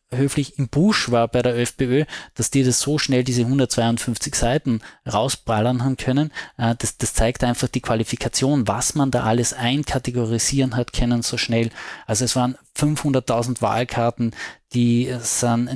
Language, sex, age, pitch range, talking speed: German, male, 20-39, 115-135 Hz, 160 wpm